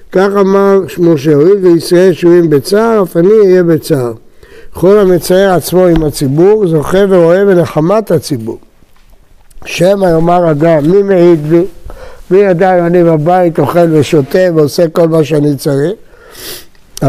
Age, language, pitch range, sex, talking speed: 60-79, Hebrew, 160-200 Hz, male, 135 wpm